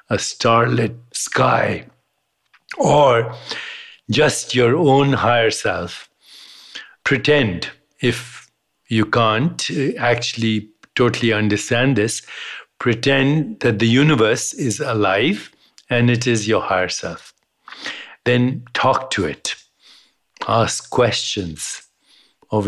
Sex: male